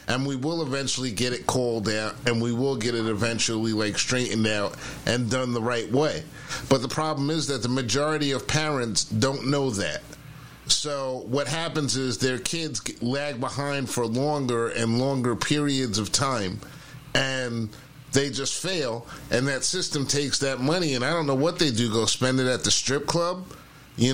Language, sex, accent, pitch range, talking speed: English, male, American, 120-145 Hz, 185 wpm